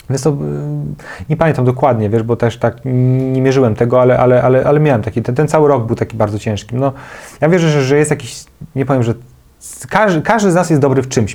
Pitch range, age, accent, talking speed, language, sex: 125-150 Hz, 30-49, native, 230 wpm, Polish, male